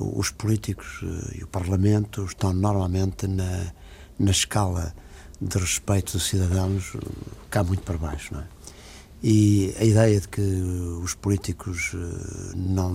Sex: male